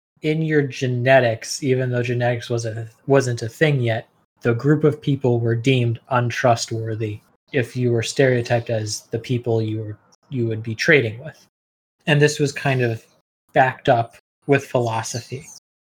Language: English